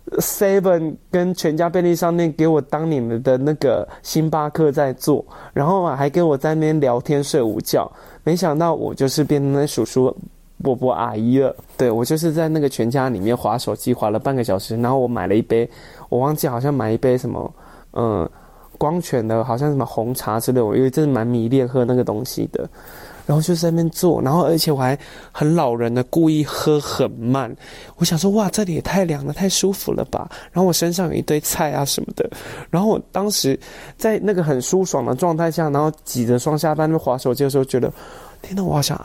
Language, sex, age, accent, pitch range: Chinese, male, 20-39, native, 130-170 Hz